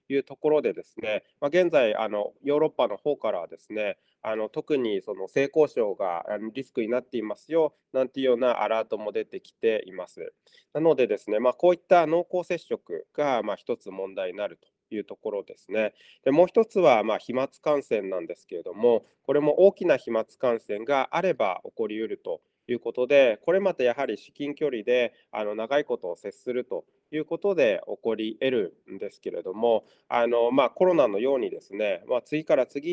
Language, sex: Japanese, male